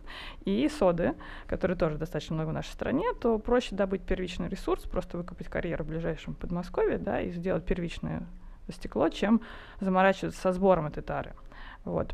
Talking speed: 160 wpm